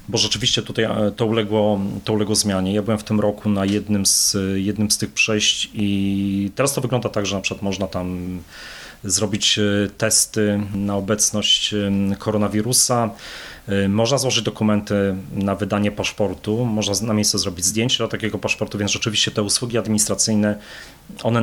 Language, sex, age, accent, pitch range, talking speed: Polish, male, 30-49, native, 100-115 Hz, 150 wpm